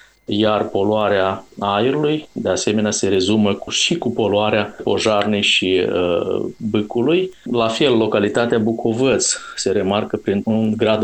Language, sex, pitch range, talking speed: Romanian, male, 100-115 Hz, 130 wpm